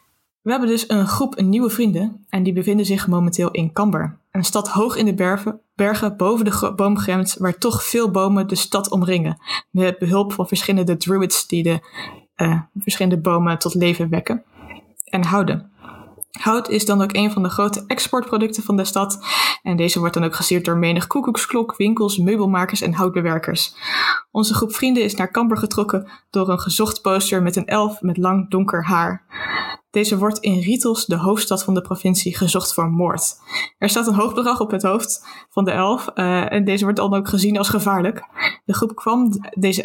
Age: 20-39